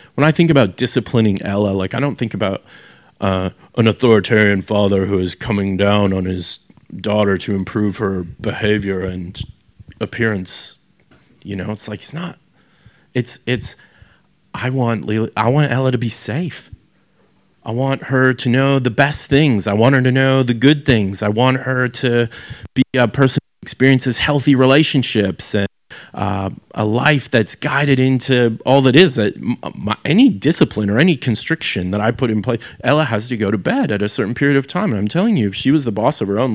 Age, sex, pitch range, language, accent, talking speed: 30-49, male, 105-145 Hz, English, American, 190 wpm